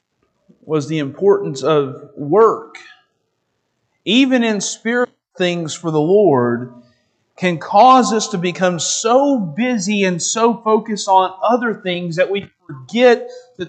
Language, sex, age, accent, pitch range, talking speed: English, male, 40-59, American, 160-230 Hz, 125 wpm